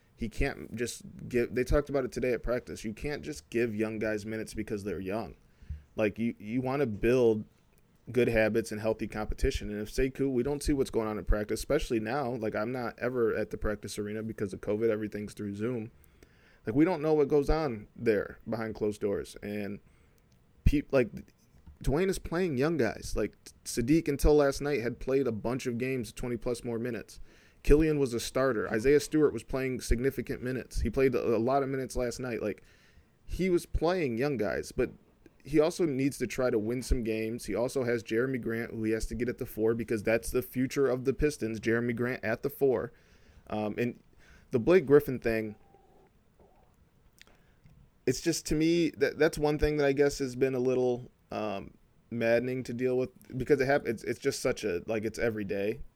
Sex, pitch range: male, 110-135 Hz